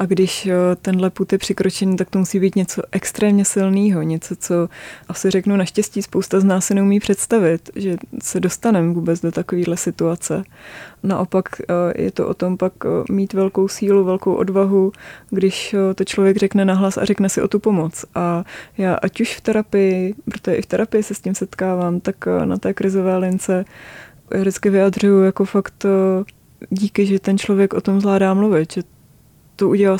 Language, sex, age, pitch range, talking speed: Czech, female, 20-39, 175-195 Hz, 170 wpm